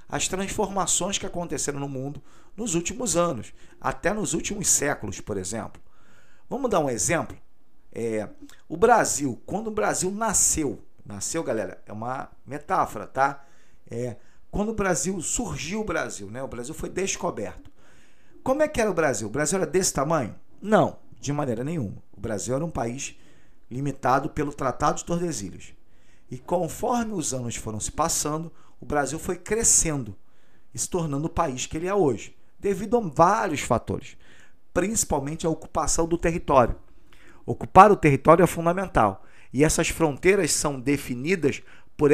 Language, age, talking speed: Portuguese, 40-59, 155 wpm